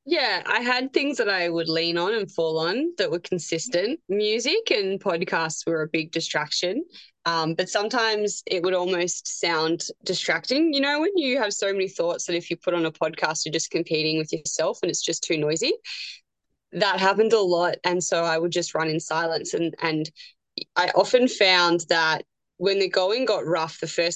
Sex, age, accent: female, 20-39, Australian